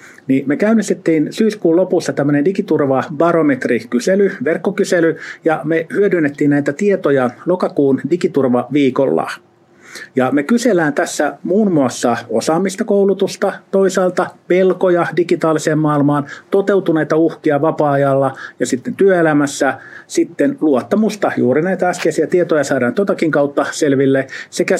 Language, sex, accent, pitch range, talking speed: Finnish, male, native, 140-190 Hz, 110 wpm